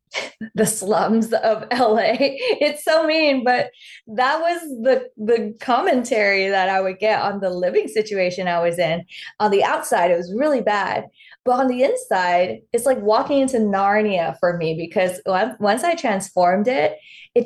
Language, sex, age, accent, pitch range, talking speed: English, female, 20-39, American, 195-255 Hz, 165 wpm